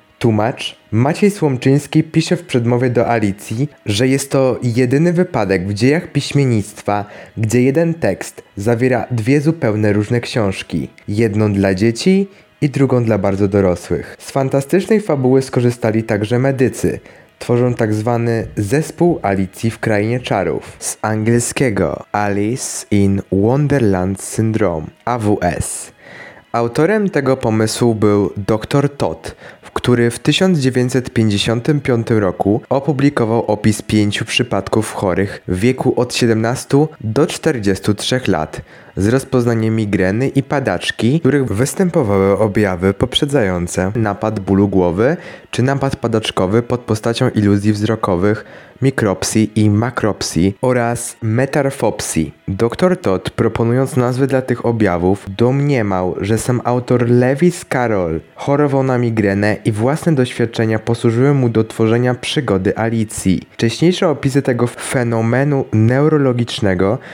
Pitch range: 105-135 Hz